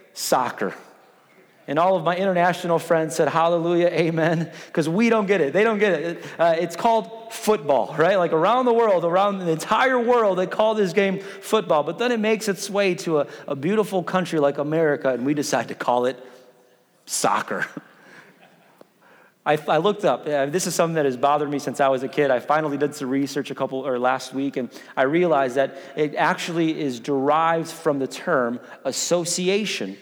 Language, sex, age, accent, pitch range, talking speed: English, male, 30-49, American, 140-185 Hz, 190 wpm